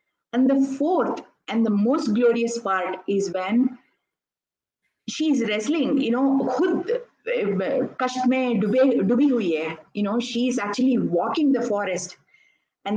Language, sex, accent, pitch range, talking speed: Hindi, female, native, 200-250 Hz, 140 wpm